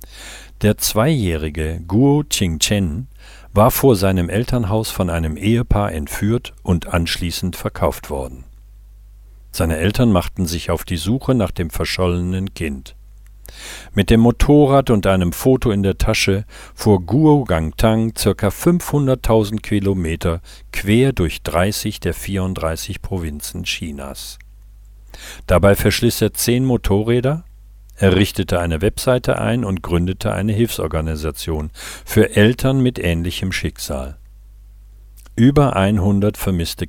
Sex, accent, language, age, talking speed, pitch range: male, German, German, 50-69, 115 wpm, 85-105 Hz